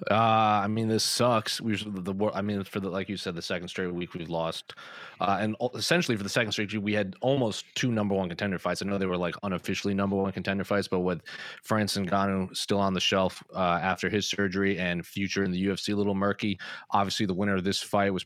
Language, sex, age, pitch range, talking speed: English, male, 20-39, 95-110 Hz, 250 wpm